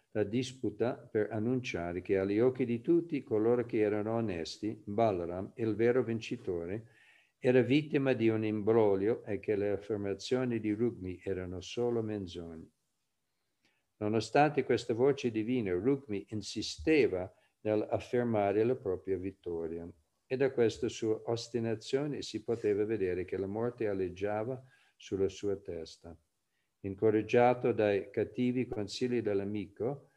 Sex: male